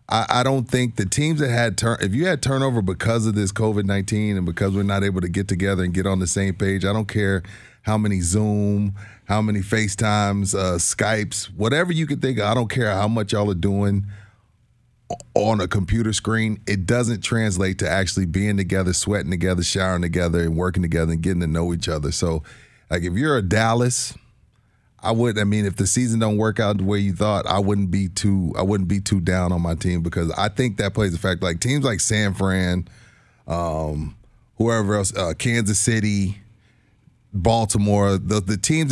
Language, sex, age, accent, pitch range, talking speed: English, male, 30-49, American, 95-115 Hz, 205 wpm